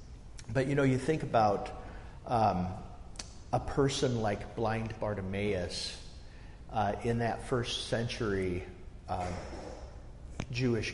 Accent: American